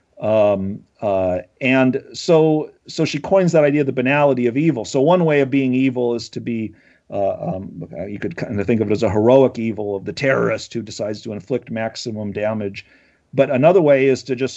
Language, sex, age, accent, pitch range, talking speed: English, male, 40-59, American, 100-135 Hz, 210 wpm